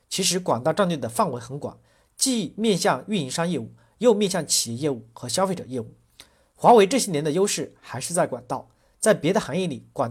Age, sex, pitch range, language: 40-59, male, 130-200 Hz, Chinese